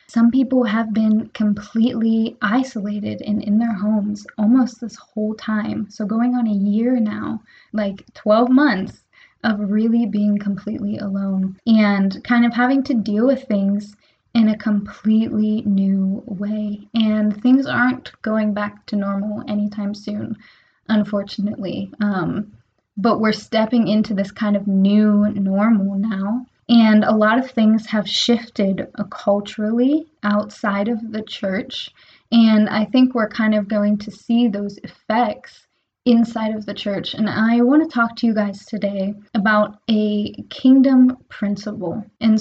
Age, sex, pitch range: 10-29, female, 205-235 Hz